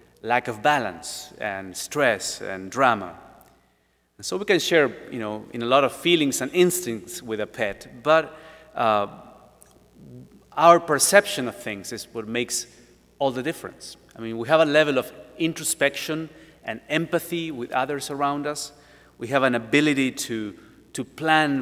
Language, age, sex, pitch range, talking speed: English, 30-49, male, 115-150 Hz, 155 wpm